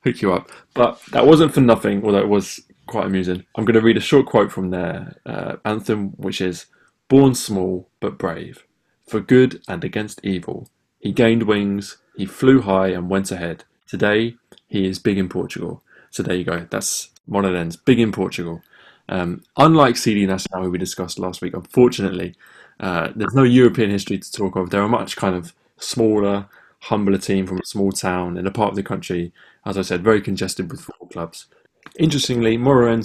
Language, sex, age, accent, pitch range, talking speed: English, male, 20-39, British, 95-110 Hz, 190 wpm